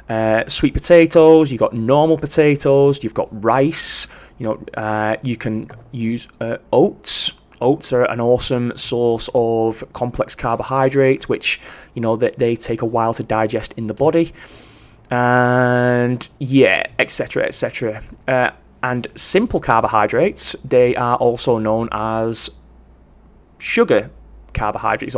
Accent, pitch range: British, 110-135 Hz